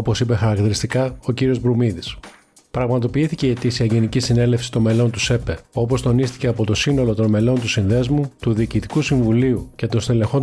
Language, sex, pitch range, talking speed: Greek, male, 115-135 Hz, 175 wpm